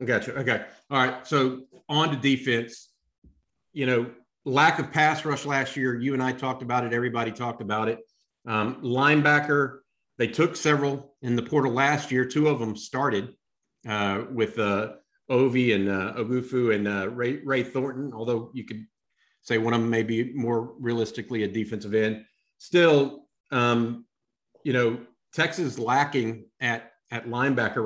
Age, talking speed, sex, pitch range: 50-69, 165 wpm, male, 110-135 Hz